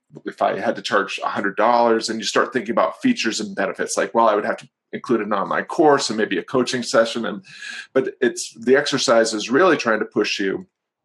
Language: English